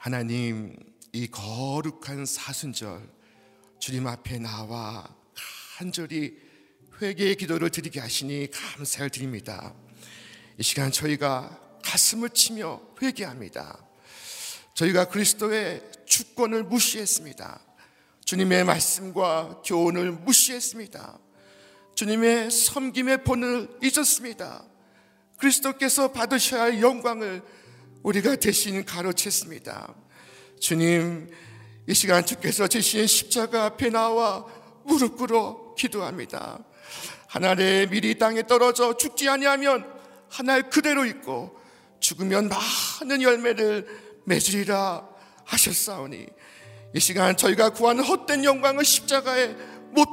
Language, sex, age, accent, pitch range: Korean, male, 50-69, native, 150-245 Hz